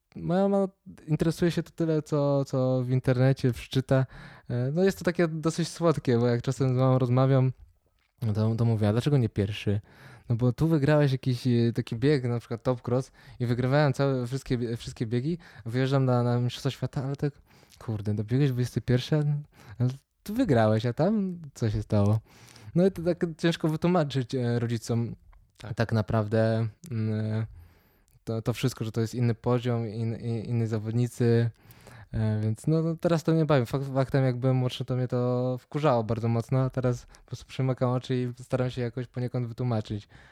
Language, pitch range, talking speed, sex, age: Polish, 115-135 Hz, 180 wpm, male, 20-39